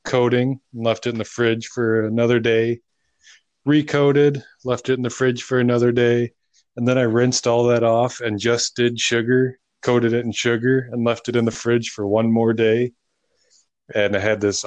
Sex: male